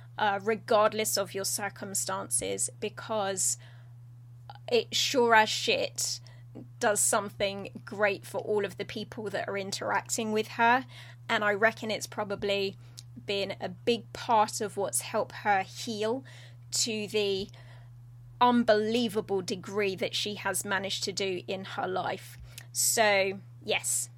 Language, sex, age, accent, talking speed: English, female, 20-39, British, 130 wpm